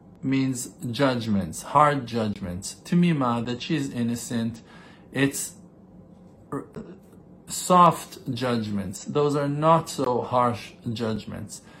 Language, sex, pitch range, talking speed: English, male, 115-155 Hz, 100 wpm